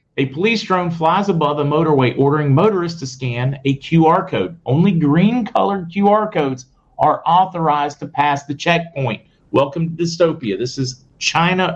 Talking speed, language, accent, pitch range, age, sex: 160 wpm, English, American, 125-165 Hz, 40-59, male